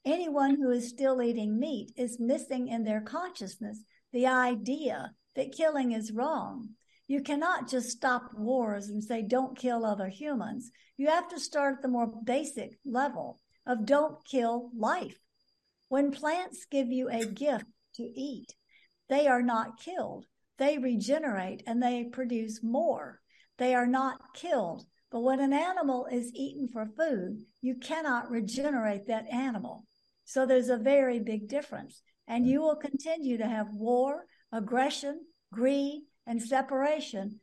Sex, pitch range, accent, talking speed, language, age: female, 230-275 Hz, American, 150 wpm, English, 60-79